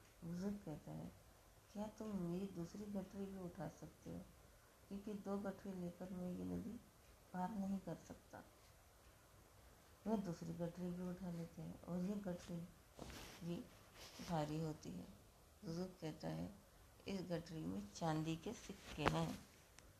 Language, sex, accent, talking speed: Hindi, female, native, 145 wpm